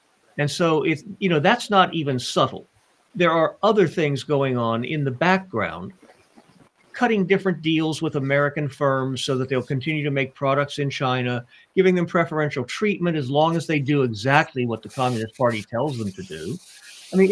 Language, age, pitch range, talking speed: English, 50-69, 135-185 Hz, 185 wpm